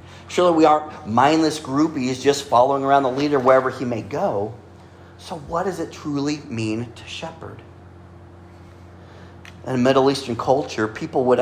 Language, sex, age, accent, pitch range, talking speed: English, male, 40-59, American, 90-130 Hz, 150 wpm